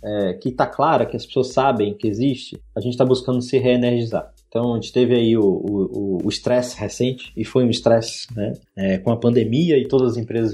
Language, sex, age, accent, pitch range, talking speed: Portuguese, male, 20-39, Brazilian, 110-140 Hz, 230 wpm